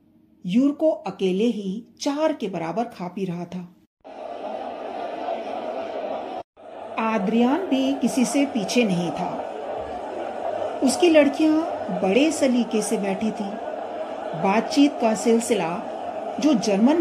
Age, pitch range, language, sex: 40-59, 185-275 Hz, Hindi, female